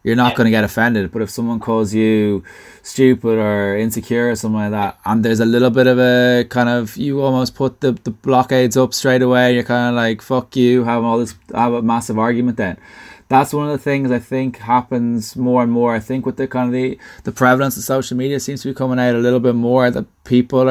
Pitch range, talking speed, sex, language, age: 110-125 Hz, 245 wpm, male, English, 20-39